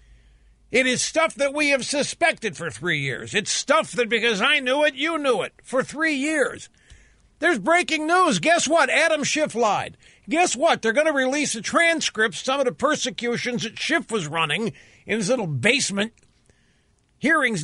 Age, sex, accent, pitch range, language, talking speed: 50-69, male, American, 230-310 Hz, English, 180 wpm